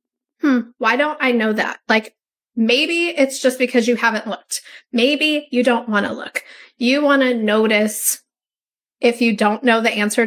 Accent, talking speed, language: American, 170 wpm, English